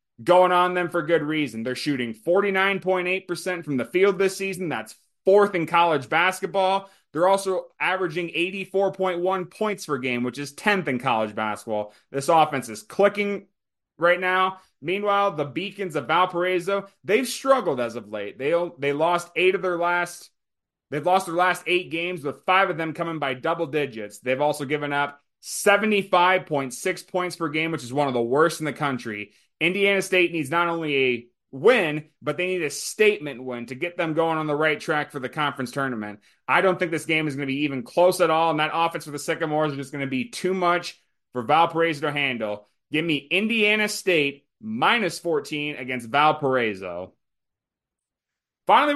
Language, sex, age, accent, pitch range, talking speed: English, male, 20-39, American, 145-190 Hz, 185 wpm